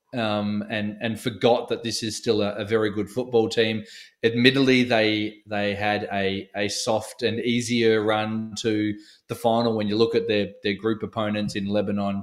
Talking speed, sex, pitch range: 180 wpm, male, 105-115 Hz